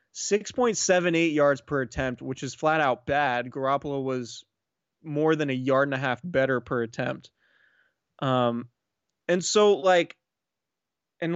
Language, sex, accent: English, male, American